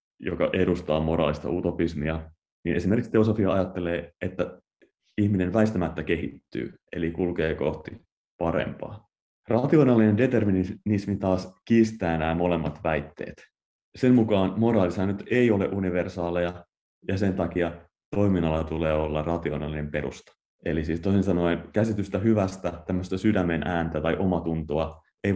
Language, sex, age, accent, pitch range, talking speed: English, male, 30-49, Finnish, 80-100 Hz, 115 wpm